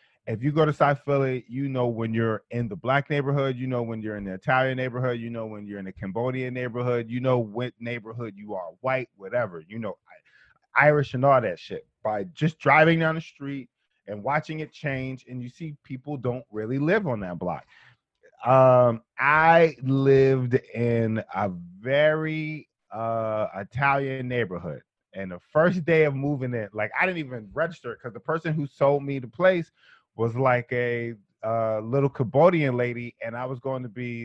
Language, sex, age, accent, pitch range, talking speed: English, male, 30-49, American, 115-140 Hz, 190 wpm